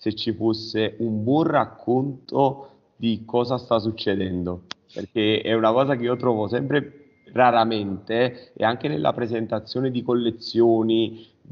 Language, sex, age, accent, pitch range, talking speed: Italian, male, 30-49, native, 105-120 Hz, 130 wpm